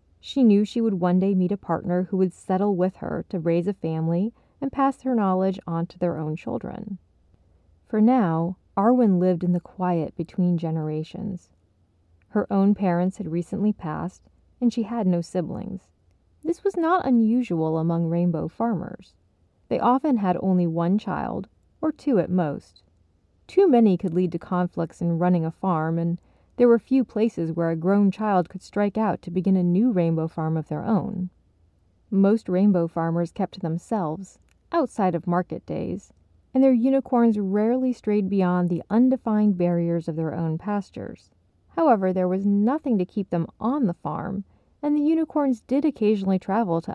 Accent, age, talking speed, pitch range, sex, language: American, 30-49, 175 wpm, 170-220 Hz, female, English